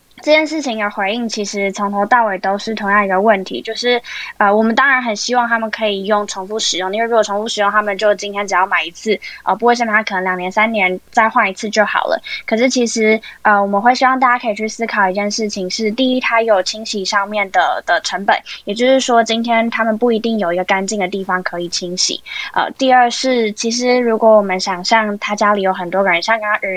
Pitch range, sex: 195-235 Hz, female